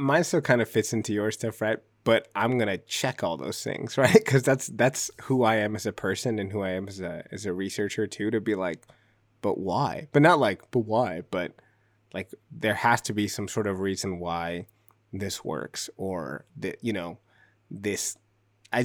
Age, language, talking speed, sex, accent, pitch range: 20-39, English, 205 wpm, male, American, 95-115 Hz